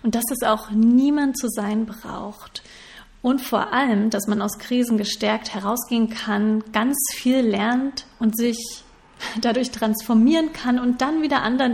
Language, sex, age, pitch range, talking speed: German, female, 30-49, 210-245 Hz, 155 wpm